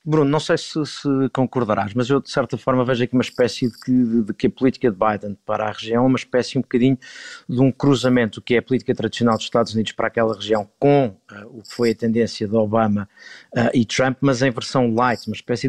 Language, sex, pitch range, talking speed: Portuguese, male, 110-130 Hz, 245 wpm